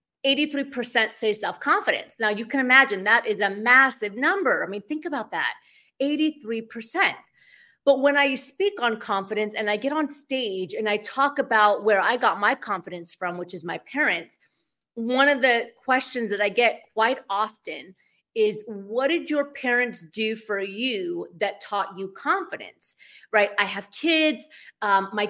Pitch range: 205-265 Hz